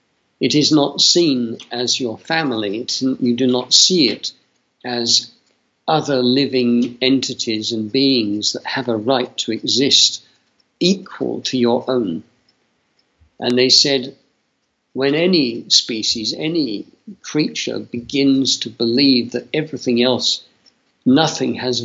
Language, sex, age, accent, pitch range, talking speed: English, male, 50-69, British, 115-135 Hz, 120 wpm